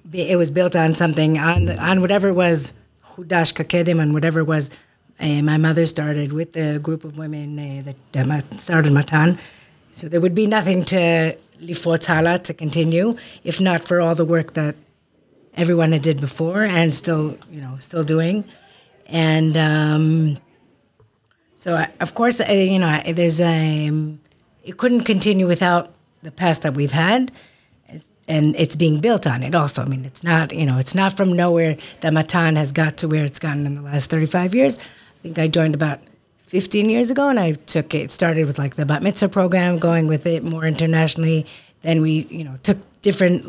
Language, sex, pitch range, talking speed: English, female, 150-175 Hz, 190 wpm